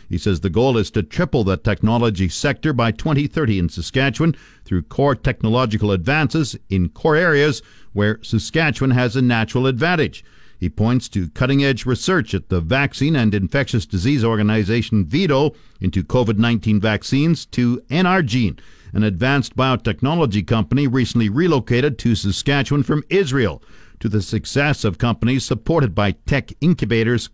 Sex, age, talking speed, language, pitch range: male, 50-69, 140 wpm, English, 110-160 Hz